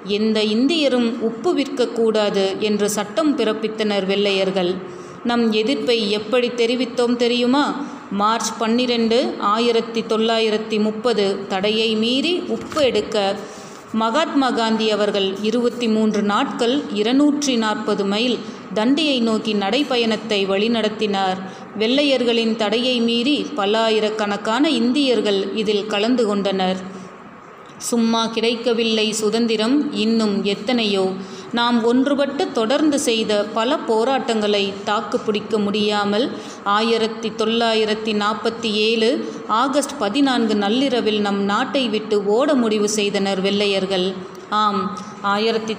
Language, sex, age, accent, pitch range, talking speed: Tamil, female, 30-49, native, 210-240 Hz, 90 wpm